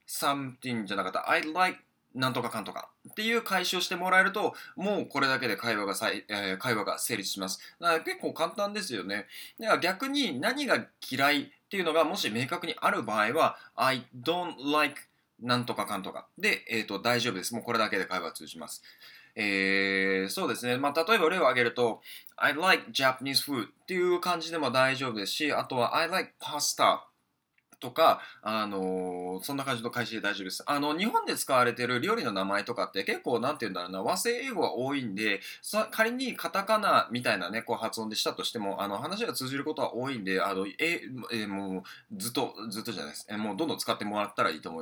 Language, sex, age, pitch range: Japanese, male, 20-39, 105-160 Hz